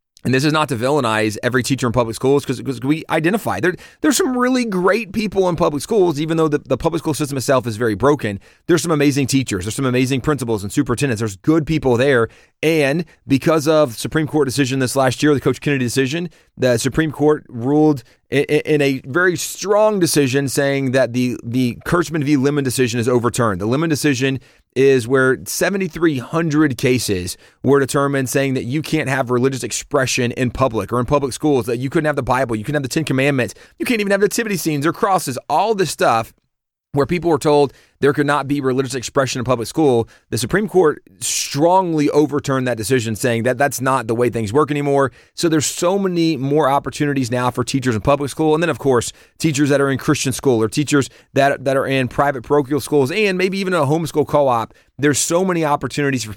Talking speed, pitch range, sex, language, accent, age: 210 wpm, 130-155 Hz, male, English, American, 30-49